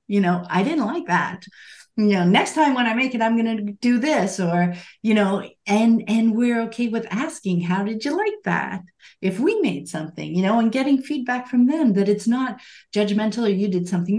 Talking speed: 220 wpm